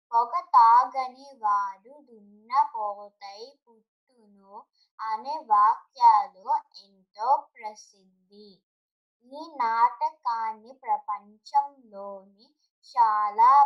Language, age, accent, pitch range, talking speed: Telugu, 20-39, native, 205-315 Hz, 55 wpm